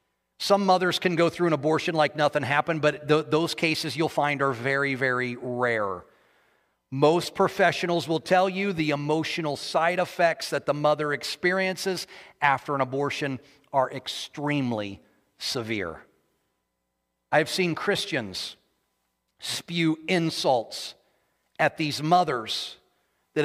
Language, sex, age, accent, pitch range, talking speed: English, male, 40-59, American, 150-200 Hz, 120 wpm